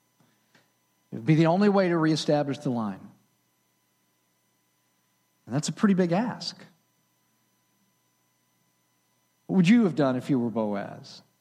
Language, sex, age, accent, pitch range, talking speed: English, male, 40-59, American, 135-195 Hz, 130 wpm